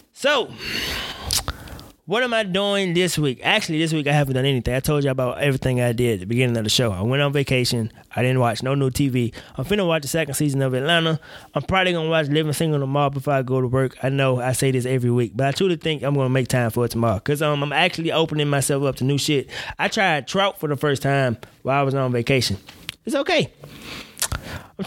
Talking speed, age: 240 wpm, 20-39